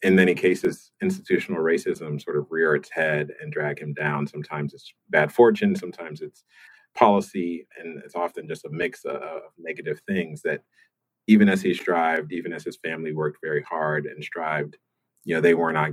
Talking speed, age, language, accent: 185 wpm, 30-49, English, American